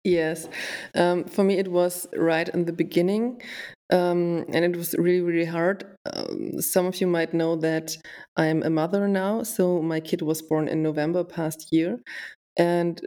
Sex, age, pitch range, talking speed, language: female, 20-39, 160-185 Hz, 180 wpm, English